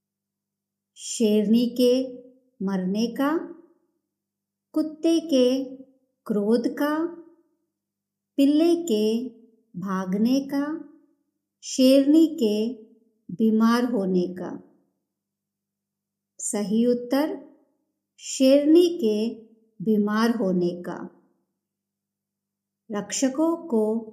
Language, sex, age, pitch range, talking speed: Hindi, male, 50-69, 205-280 Hz, 65 wpm